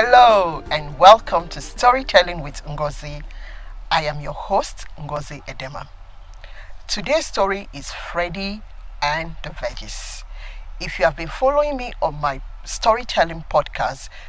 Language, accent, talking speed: English, Nigerian, 125 wpm